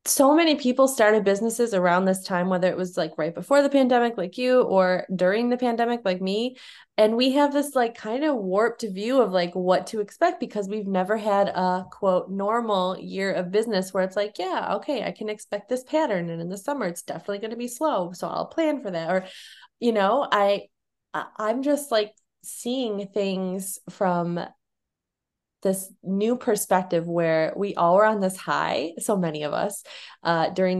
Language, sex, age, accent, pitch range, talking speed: English, female, 20-39, American, 185-240 Hz, 195 wpm